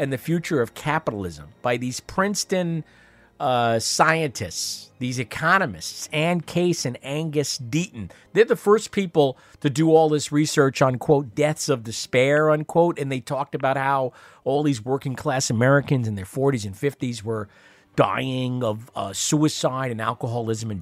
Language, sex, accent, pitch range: English, male, American, 115-155 Hz